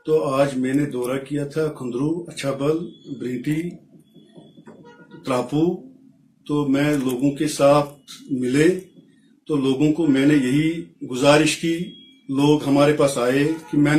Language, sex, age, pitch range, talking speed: Urdu, male, 50-69, 140-165 Hz, 135 wpm